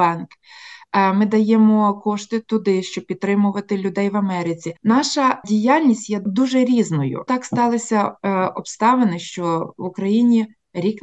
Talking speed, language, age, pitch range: 120 wpm, Ukrainian, 20-39, 185-230 Hz